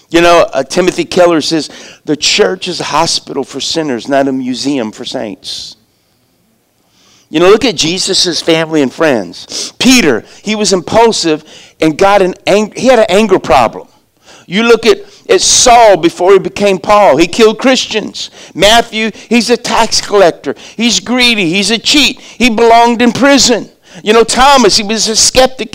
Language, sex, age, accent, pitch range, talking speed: English, male, 50-69, American, 200-275 Hz, 170 wpm